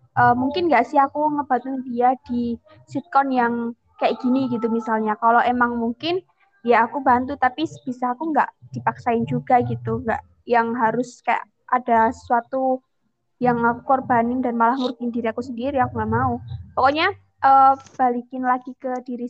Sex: female